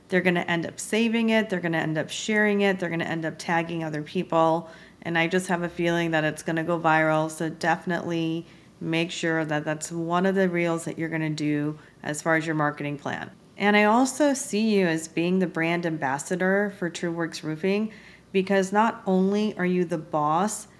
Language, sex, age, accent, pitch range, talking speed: English, female, 40-59, American, 165-195 Hz, 220 wpm